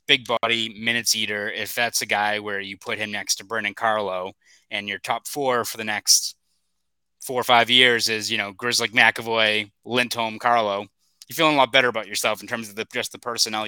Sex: male